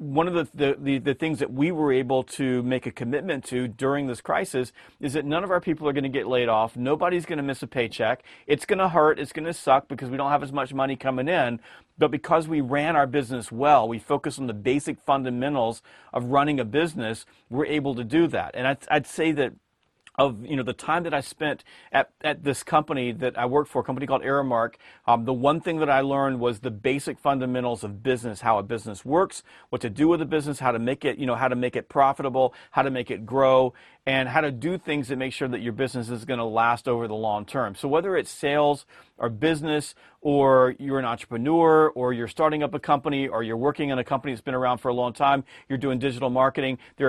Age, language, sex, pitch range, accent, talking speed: 40-59, English, male, 125-150 Hz, American, 245 wpm